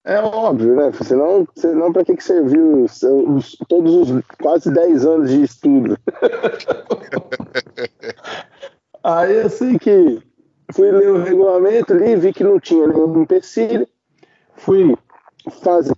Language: Portuguese